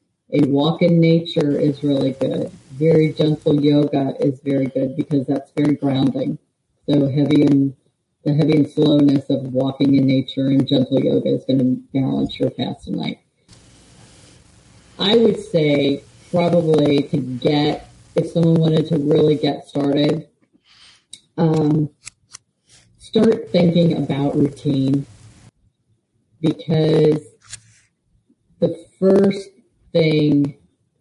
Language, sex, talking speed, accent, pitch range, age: English, female, 120 wpm, American, 140-160 Hz, 40-59